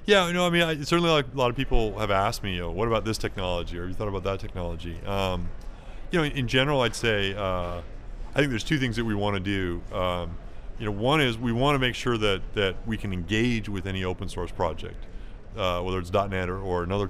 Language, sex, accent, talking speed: English, male, American, 260 wpm